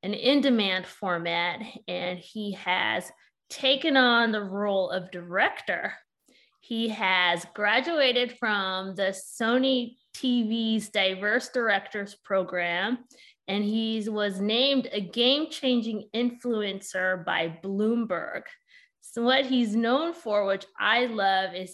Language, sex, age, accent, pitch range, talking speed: English, female, 20-39, American, 200-255 Hz, 110 wpm